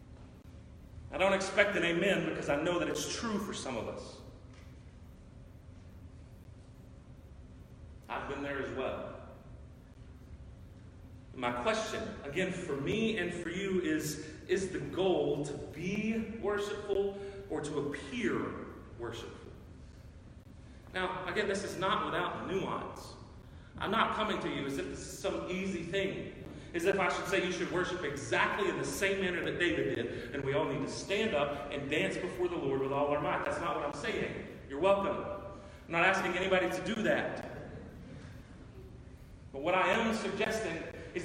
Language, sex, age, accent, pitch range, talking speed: English, male, 40-59, American, 135-190 Hz, 160 wpm